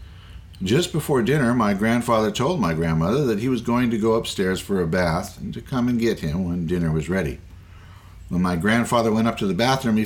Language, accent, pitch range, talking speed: English, American, 90-125 Hz, 220 wpm